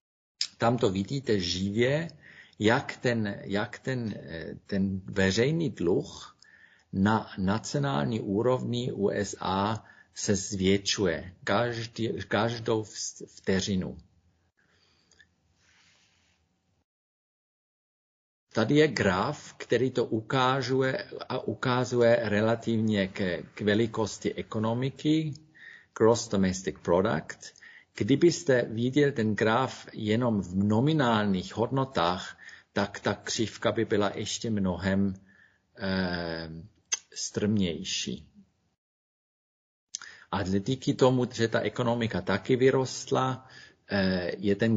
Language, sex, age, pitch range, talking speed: Czech, male, 50-69, 95-120 Hz, 80 wpm